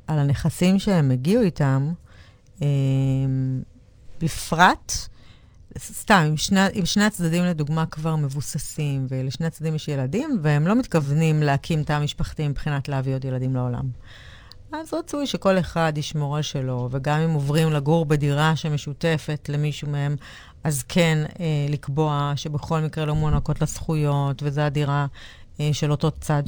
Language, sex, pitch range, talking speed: Hebrew, female, 135-165 Hz, 135 wpm